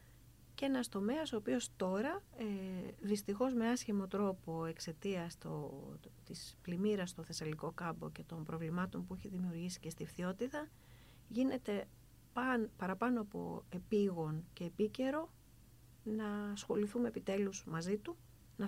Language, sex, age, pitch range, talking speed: Greek, female, 40-59, 165-215 Hz, 125 wpm